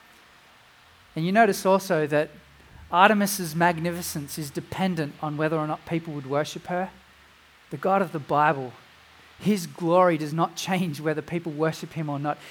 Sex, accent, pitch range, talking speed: male, Australian, 175-215 Hz, 160 wpm